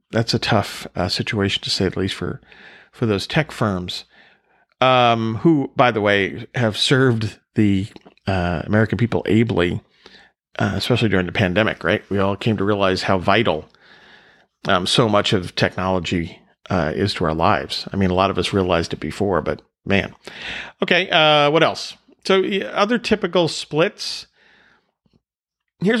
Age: 40-59